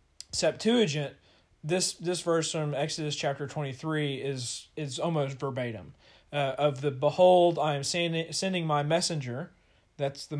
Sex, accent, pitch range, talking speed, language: male, American, 140-170 Hz, 145 wpm, English